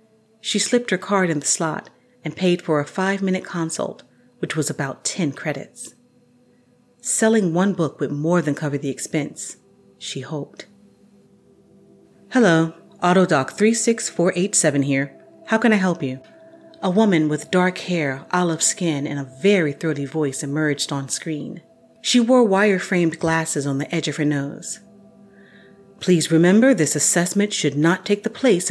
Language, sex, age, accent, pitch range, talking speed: English, female, 40-59, American, 155-220 Hz, 150 wpm